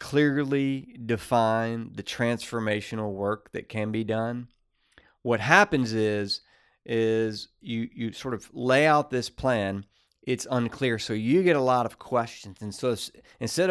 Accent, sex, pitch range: American, male, 110-130 Hz